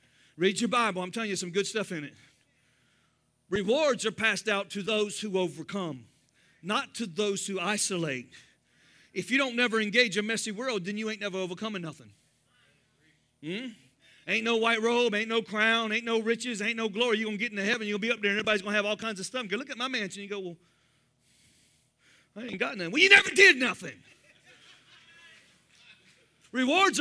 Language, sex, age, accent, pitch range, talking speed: English, male, 40-59, American, 140-225 Hz, 200 wpm